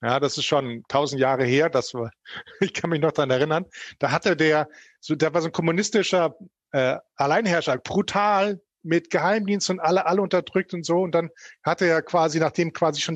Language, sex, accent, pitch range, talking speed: English, male, German, 160-205 Hz, 195 wpm